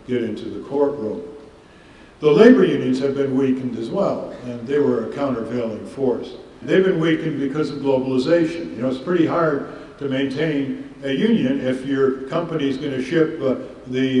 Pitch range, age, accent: 125-150 Hz, 60-79, American